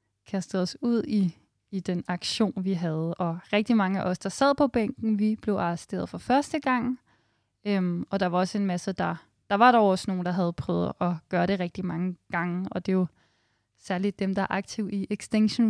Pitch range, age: 180-220 Hz, 20-39